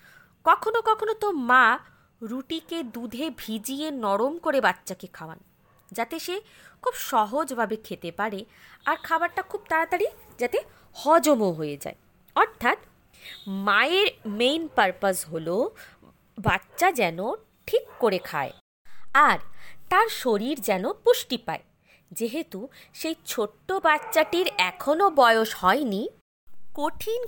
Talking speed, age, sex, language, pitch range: 110 wpm, 20-39, female, Bengali, 200-315 Hz